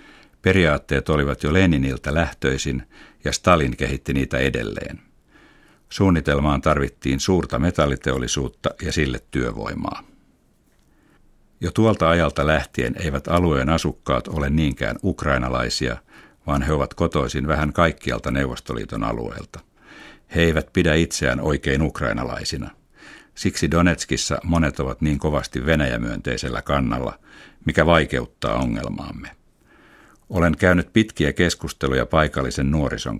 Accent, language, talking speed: native, Finnish, 105 wpm